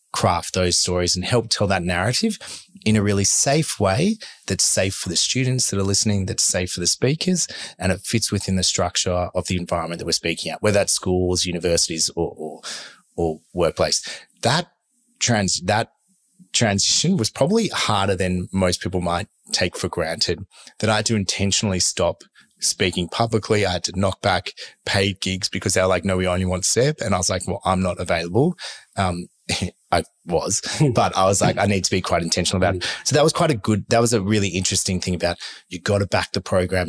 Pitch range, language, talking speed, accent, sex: 90-115 Hz, English, 205 wpm, Australian, male